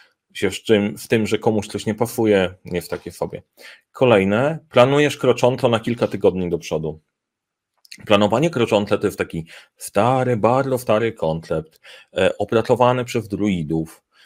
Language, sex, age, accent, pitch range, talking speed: Polish, male, 30-49, native, 95-115 Hz, 140 wpm